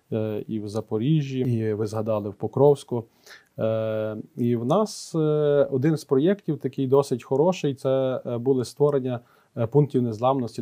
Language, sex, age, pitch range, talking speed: Ukrainian, male, 20-39, 110-130 Hz, 125 wpm